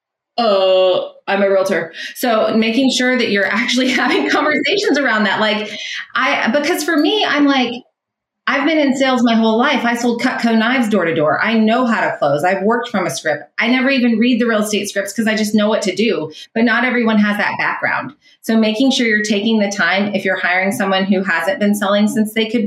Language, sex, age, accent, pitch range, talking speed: English, female, 30-49, American, 190-245 Hz, 225 wpm